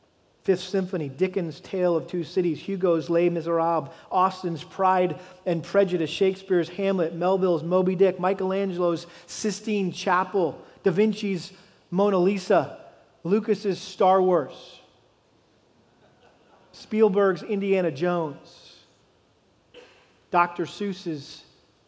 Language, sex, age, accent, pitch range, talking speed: English, male, 40-59, American, 165-195 Hz, 95 wpm